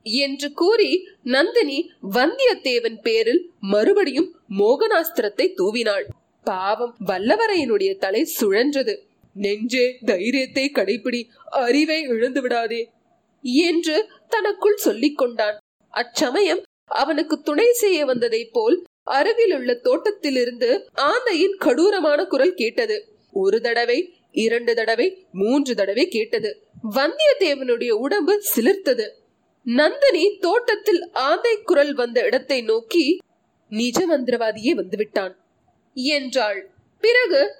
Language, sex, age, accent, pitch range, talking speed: Tamil, female, 30-49, native, 240-390 Hz, 80 wpm